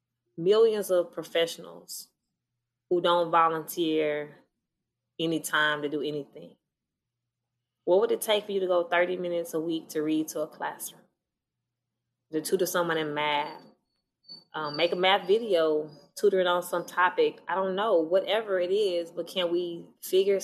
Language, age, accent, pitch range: English, 20-39, American, 155-180 Hz